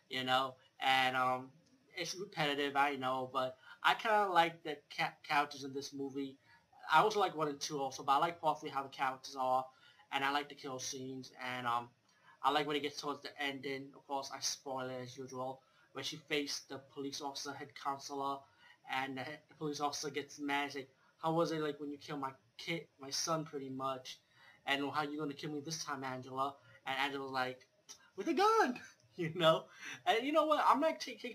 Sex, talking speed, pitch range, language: male, 215 wpm, 135-160 Hz, English